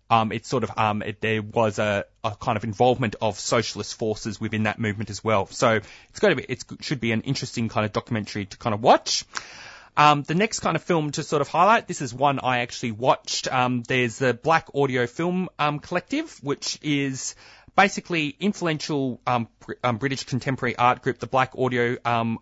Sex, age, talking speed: male, 30-49, 200 wpm